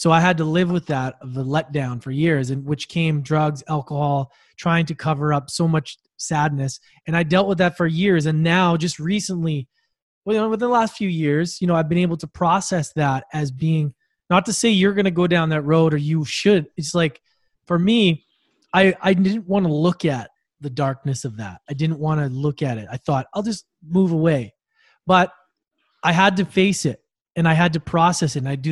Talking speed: 230 wpm